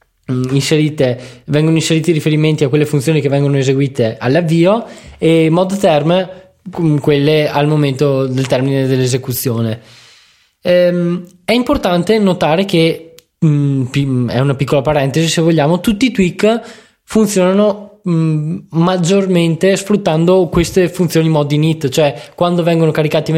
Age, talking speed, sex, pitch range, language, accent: 20-39, 125 wpm, male, 145-180 Hz, Italian, native